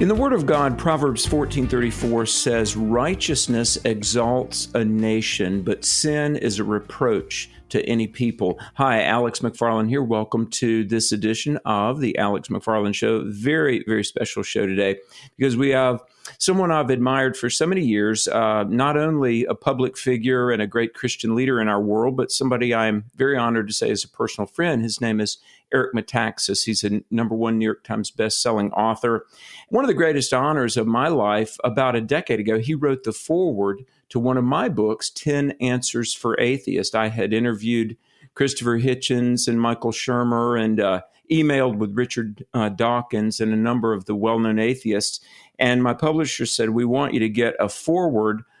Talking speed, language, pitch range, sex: 180 wpm, English, 110-130 Hz, male